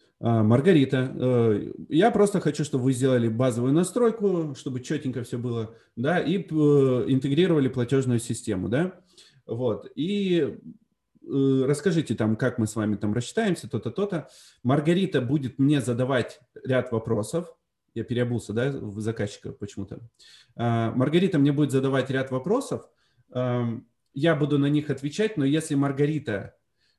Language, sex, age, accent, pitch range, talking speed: Russian, male, 30-49, native, 120-150 Hz, 125 wpm